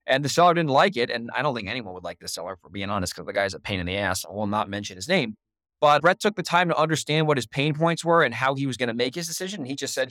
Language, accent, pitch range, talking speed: English, American, 120-150 Hz, 340 wpm